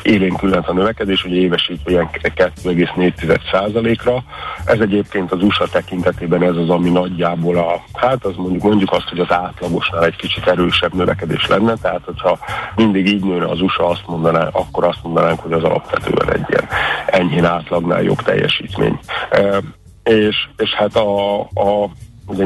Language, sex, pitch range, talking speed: Hungarian, male, 85-100 Hz, 160 wpm